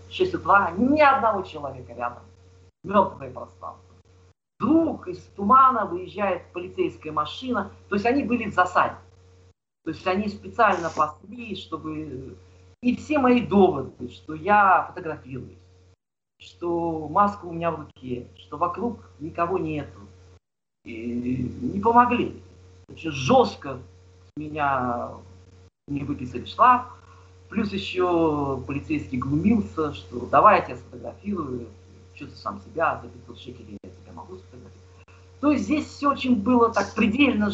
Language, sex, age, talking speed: Russian, male, 40-59, 125 wpm